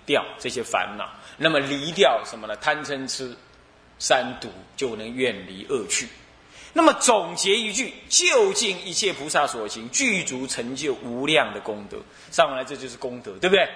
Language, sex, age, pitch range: Chinese, male, 20-39, 130-220 Hz